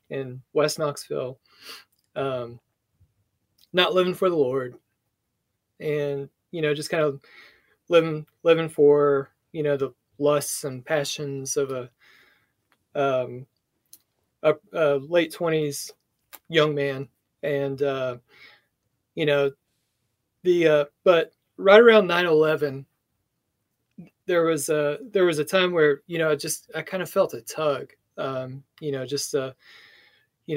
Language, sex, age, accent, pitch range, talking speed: English, male, 30-49, American, 135-175 Hz, 135 wpm